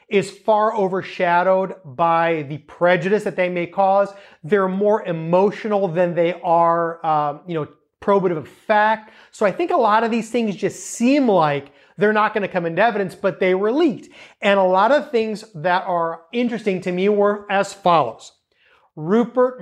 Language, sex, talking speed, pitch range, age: English, male, 175 wpm, 165-205 Hz, 30-49